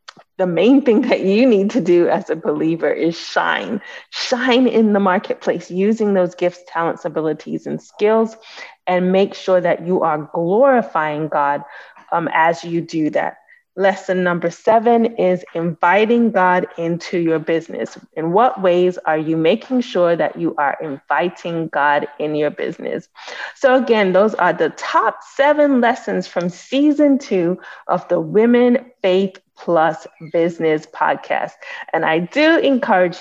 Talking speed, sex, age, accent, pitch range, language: 150 wpm, female, 30-49, American, 160-220 Hz, English